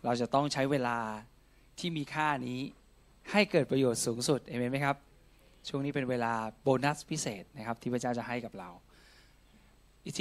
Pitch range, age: 120-150 Hz, 20-39